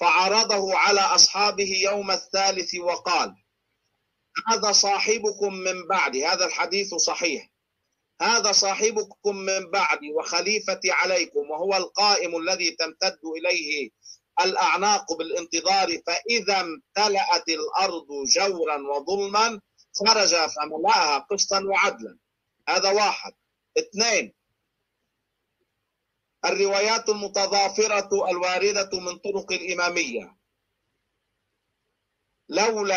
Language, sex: Arabic, male